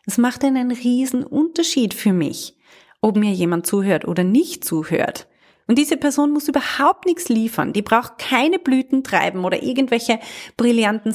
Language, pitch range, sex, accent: German, 185-260 Hz, female, German